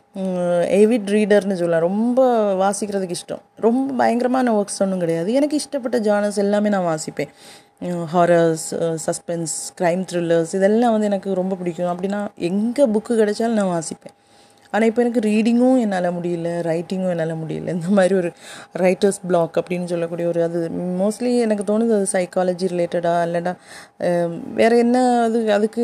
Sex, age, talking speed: female, 30-49, 140 wpm